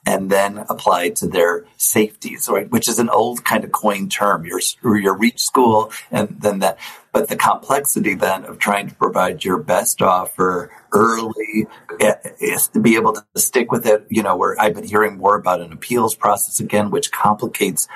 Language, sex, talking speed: English, male, 185 wpm